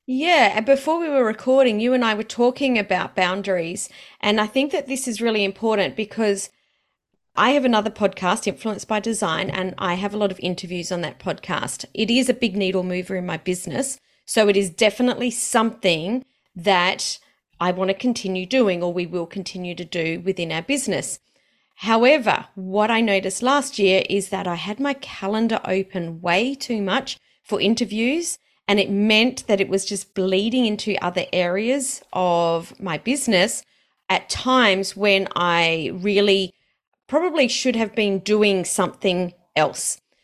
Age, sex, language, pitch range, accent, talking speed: 30-49, female, English, 190-245 Hz, Australian, 165 wpm